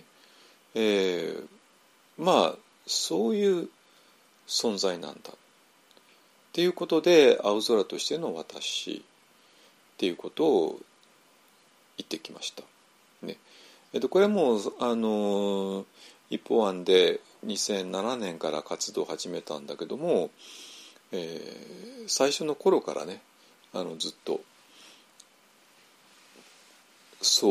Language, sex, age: Japanese, male, 40-59